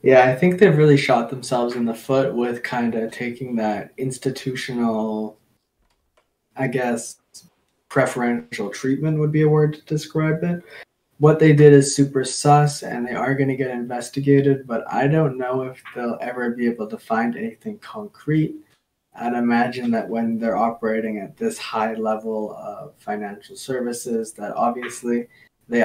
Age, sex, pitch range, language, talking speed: 20-39, male, 115-145 Hz, English, 160 wpm